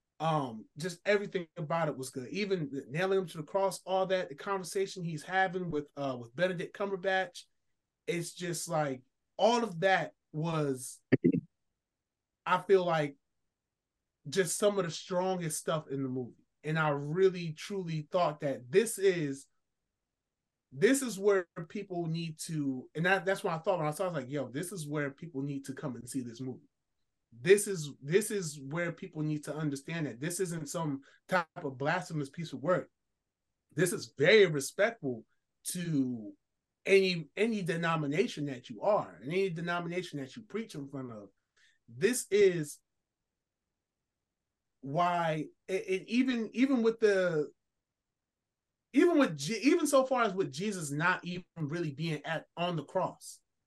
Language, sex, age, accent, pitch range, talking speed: English, male, 20-39, American, 145-195 Hz, 160 wpm